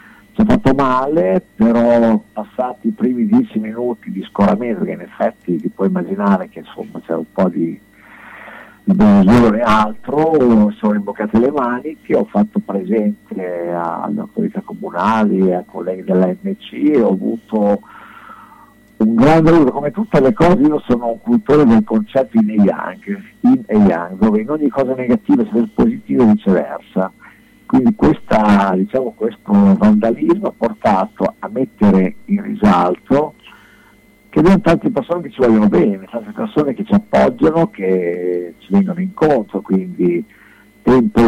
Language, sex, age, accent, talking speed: Italian, male, 60-79, native, 145 wpm